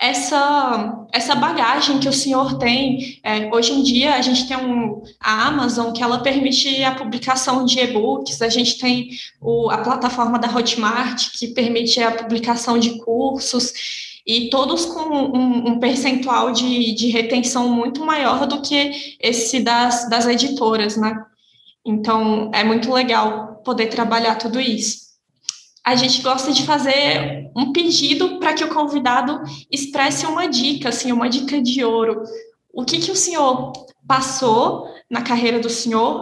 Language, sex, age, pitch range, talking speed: Portuguese, female, 20-39, 235-275 Hz, 145 wpm